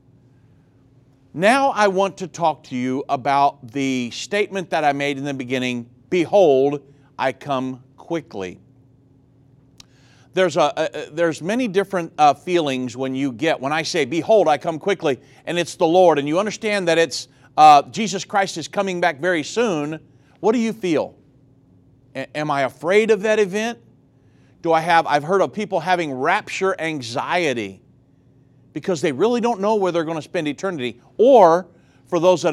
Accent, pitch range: American, 135-185 Hz